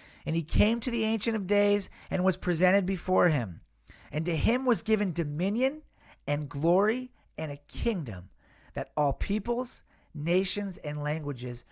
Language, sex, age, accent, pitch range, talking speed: English, male, 40-59, American, 135-190 Hz, 155 wpm